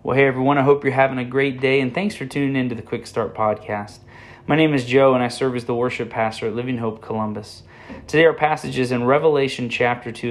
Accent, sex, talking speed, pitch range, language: American, male, 250 wpm, 120-150 Hz, English